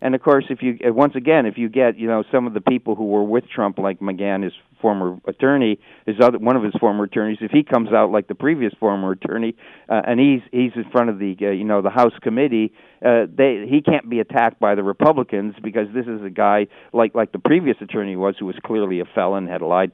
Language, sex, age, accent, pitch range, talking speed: English, male, 50-69, American, 100-125 Hz, 250 wpm